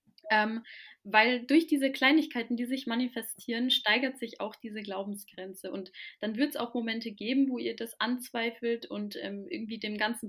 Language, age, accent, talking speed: German, 20-39, German, 170 wpm